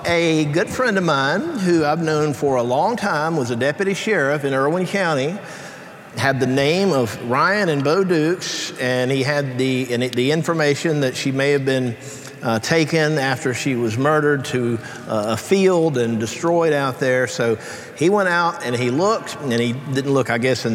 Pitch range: 130-165 Hz